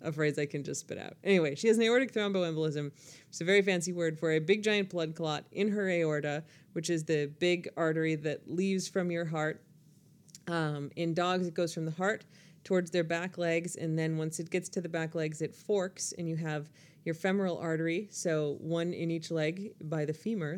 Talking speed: 215 wpm